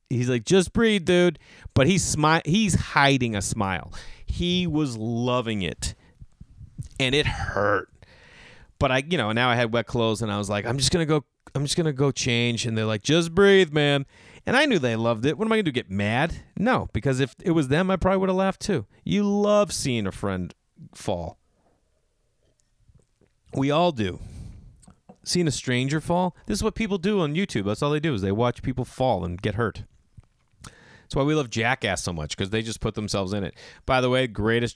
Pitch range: 105-140 Hz